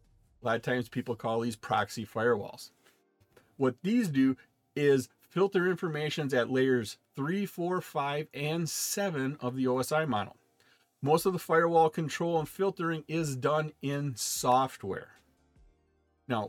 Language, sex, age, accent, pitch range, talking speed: English, male, 40-59, American, 125-160 Hz, 140 wpm